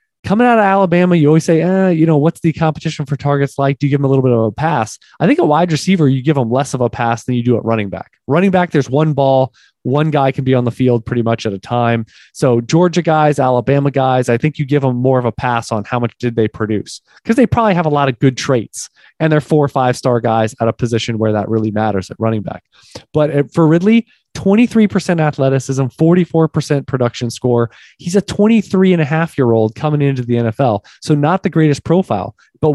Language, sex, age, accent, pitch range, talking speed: English, male, 20-39, American, 120-160 Hz, 245 wpm